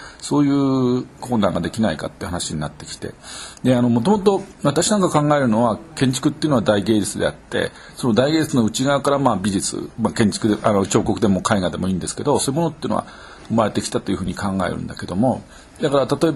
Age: 50-69